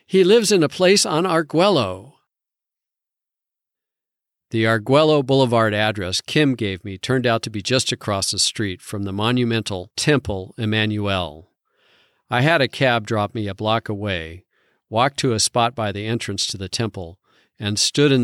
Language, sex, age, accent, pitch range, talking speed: English, male, 50-69, American, 100-125 Hz, 160 wpm